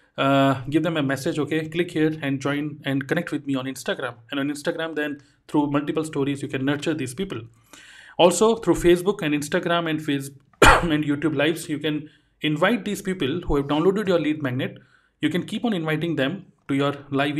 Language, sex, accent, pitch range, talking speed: Hindi, male, native, 140-190 Hz, 200 wpm